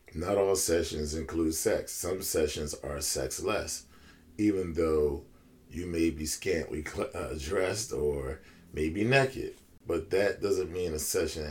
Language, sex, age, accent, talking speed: English, male, 40-59, American, 145 wpm